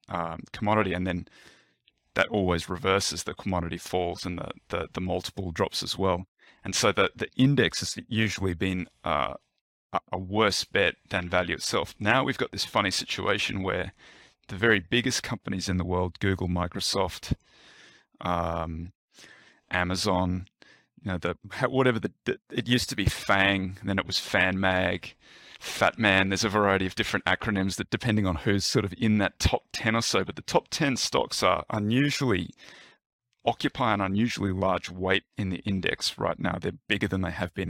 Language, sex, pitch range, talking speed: English, male, 90-110 Hz, 170 wpm